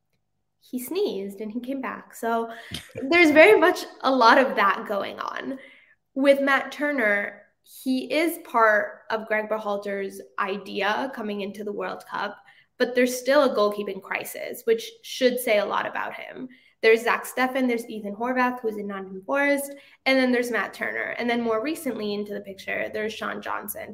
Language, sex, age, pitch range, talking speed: English, female, 10-29, 205-260 Hz, 175 wpm